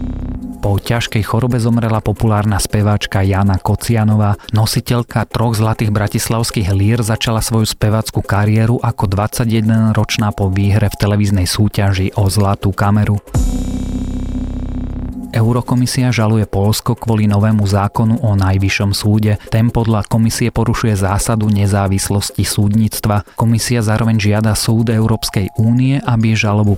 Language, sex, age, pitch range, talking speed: Slovak, male, 30-49, 100-115 Hz, 115 wpm